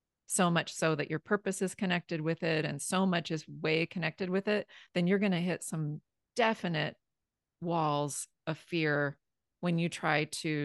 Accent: American